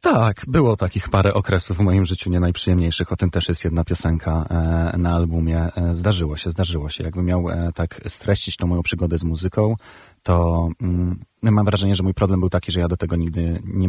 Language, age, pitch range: Polish, 30-49, 80-100 Hz